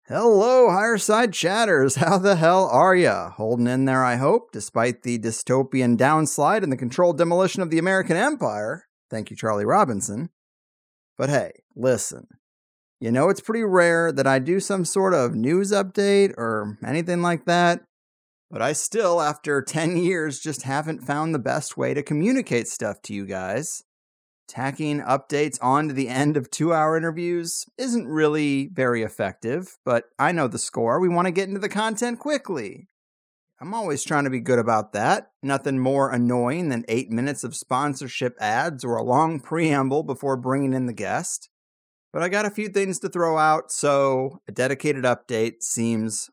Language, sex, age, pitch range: English, male, 30-49, 125-180 Hz